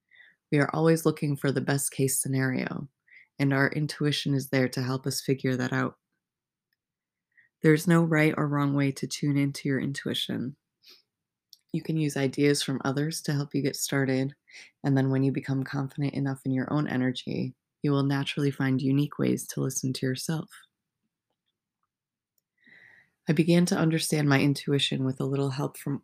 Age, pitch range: 20-39, 135-150 Hz